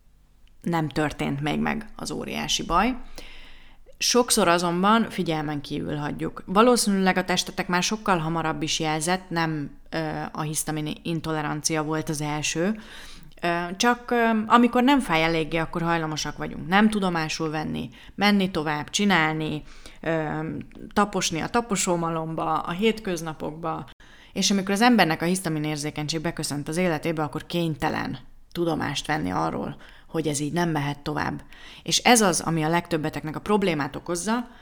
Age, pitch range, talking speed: 30-49, 150-185 Hz, 130 wpm